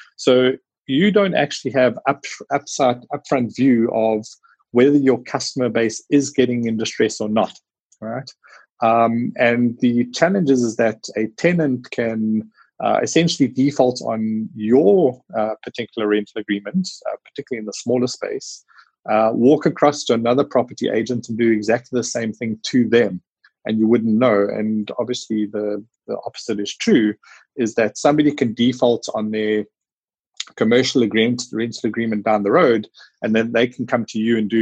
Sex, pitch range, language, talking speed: male, 110-135 Hz, English, 160 wpm